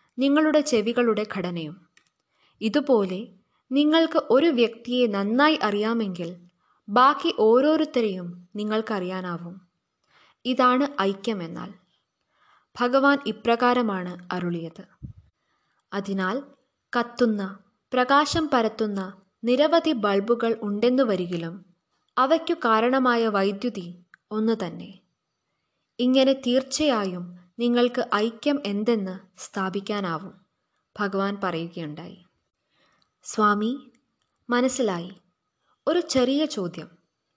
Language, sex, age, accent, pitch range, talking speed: Malayalam, female, 20-39, native, 195-260 Hz, 70 wpm